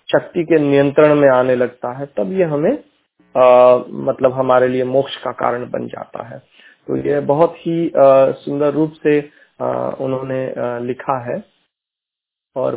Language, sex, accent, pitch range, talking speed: Hindi, male, native, 125-150 Hz, 160 wpm